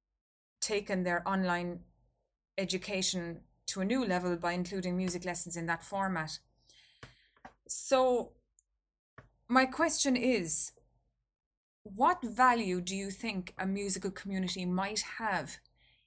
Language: English